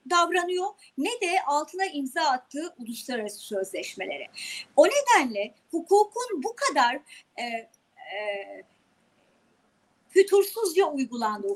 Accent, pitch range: native, 245-365 Hz